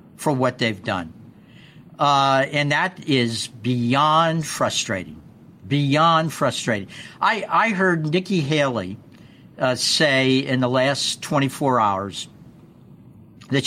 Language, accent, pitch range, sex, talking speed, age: English, American, 135-195 Hz, male, 115 wpm, 60-79